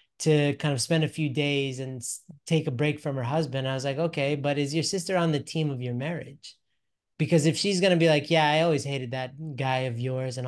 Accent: American